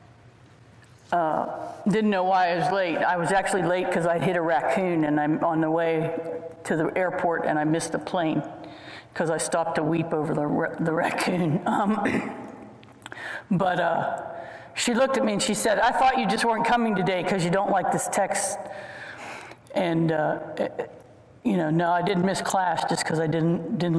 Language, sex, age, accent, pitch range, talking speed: English, female, 50-69, American, 160-205 Hz, 195 wpm